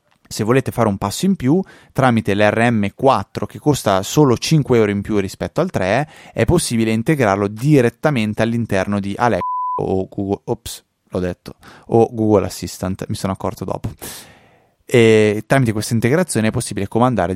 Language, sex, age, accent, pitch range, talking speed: Italian, male, 20-39, native, 95-120 Hz, 155 wpm